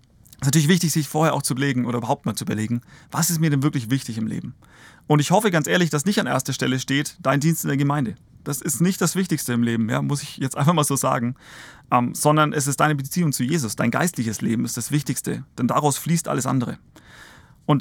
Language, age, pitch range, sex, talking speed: German, 30-49, 125-150 Hz, male, 245 wpm